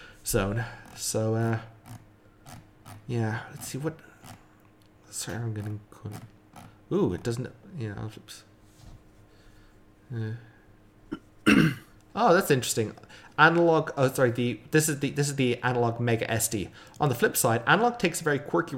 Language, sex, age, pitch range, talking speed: English, male, 30-49, 105-125 Hz, 130 wpm